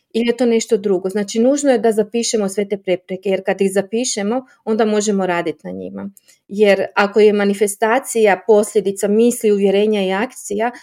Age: 30-49